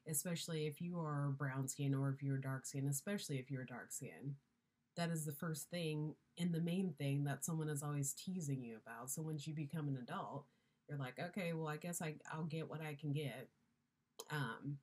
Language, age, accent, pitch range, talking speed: English, 30-49, American, 135-160 Hz, 220 wpm